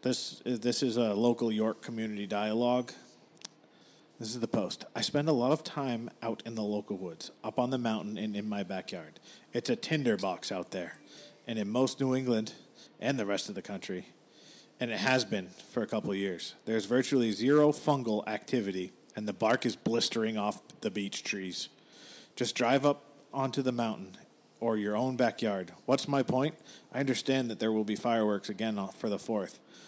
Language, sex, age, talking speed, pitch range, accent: English, male, 40-59, 185 wpm, 110-130 Hz, American